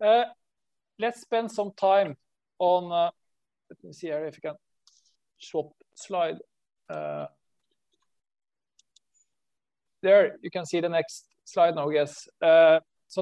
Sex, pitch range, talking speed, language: male, 150-185 Hz, 125 wpm, English